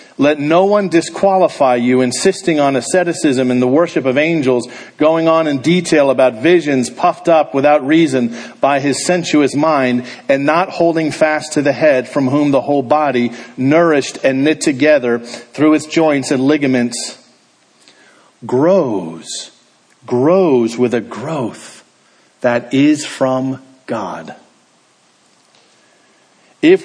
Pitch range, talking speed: 130-175 Hz, 130 wpm